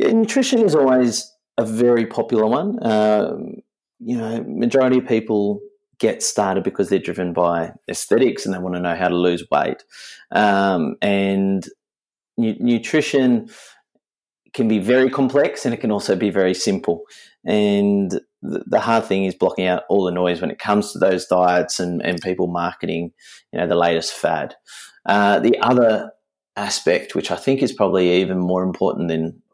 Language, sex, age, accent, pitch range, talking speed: English, male, 30-49, Australian, 95-120 Hz, 165 wpm